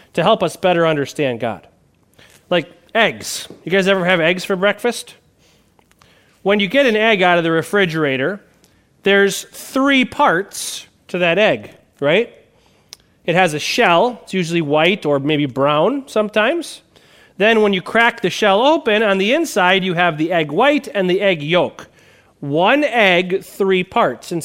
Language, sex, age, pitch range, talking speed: English, male, 30-49, 165-220 Hz, 160 wpm